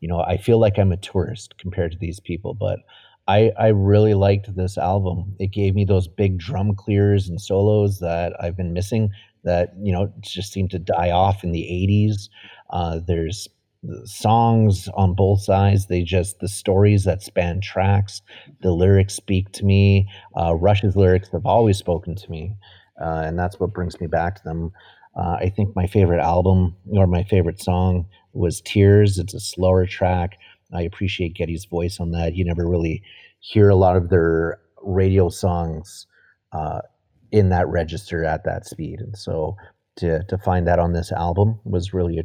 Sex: male